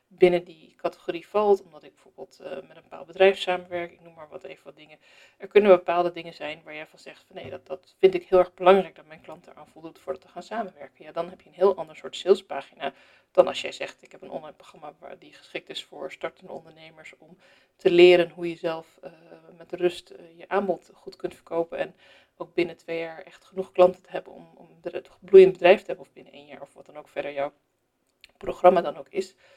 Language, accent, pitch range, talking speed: Dutch, Dutch, 170-185 Hz, 235 wpm